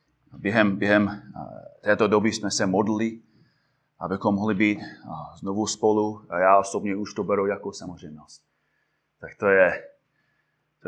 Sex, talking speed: male, 130 wpm